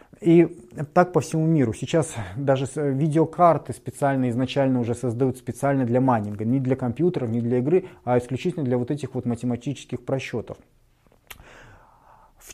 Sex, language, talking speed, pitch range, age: male, Russian, 145 wpm, 125-150 Hz, 30-49